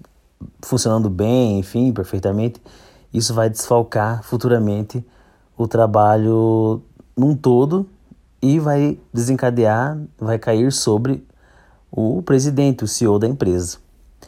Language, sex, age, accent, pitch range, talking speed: Portuguese, male, 30-49, Brazilian, 95-120 Hz, 100 wpm